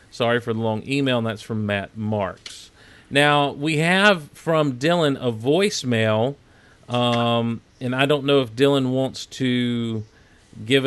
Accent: American